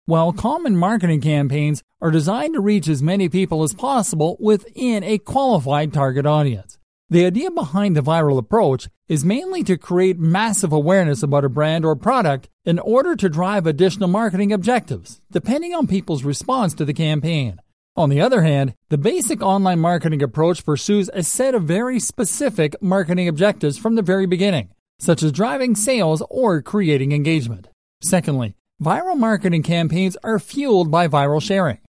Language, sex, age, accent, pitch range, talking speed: English, male, 40-59, American, 150-205 Hz, 160 wpm